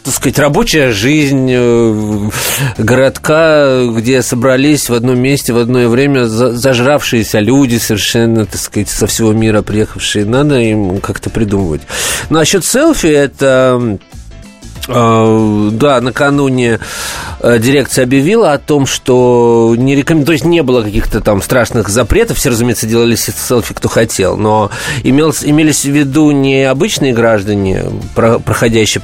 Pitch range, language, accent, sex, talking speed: 110-135 Hz, Russian, native, male, 125 wpm